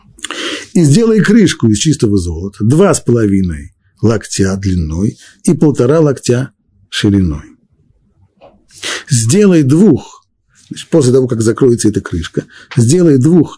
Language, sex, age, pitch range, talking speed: Russian, male, 50-69, 105-145 Hz, 110 wpm